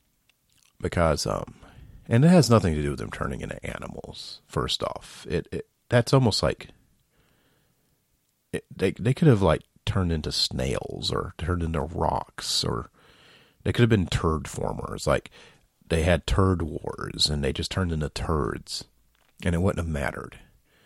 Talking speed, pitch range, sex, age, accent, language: 160 wpm, 75-95 Hz, male, 40-59, American, English